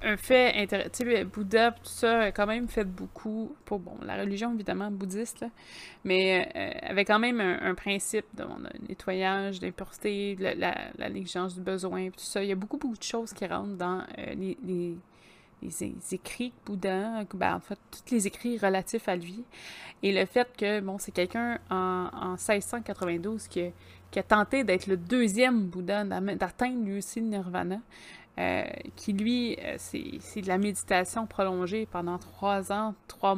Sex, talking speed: female, 185 wpm